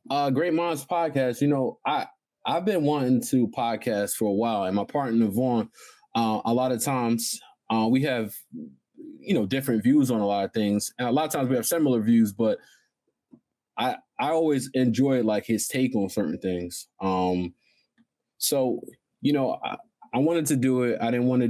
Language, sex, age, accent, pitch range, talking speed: English, male, 20-39, American, 105-130 Hz, 195 wpm